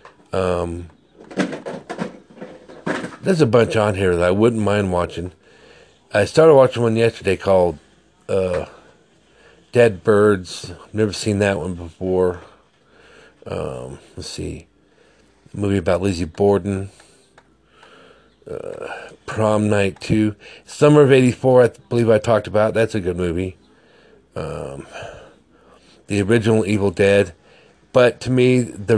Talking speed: 120 wpm